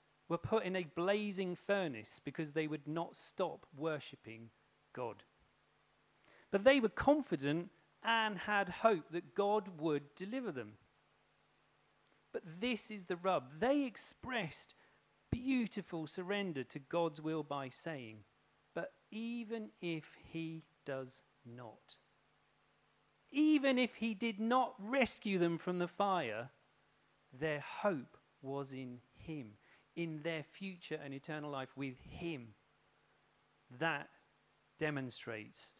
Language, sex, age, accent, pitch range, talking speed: English, male, 40-59, British, 145-195 Hz, 115 wpm